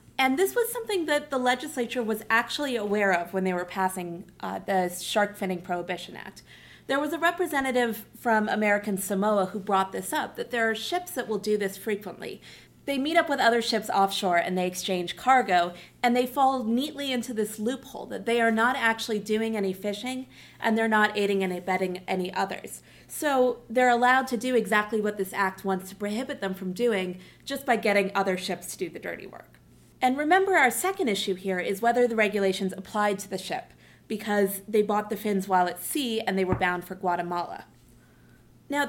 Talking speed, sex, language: 200 wpm, female, English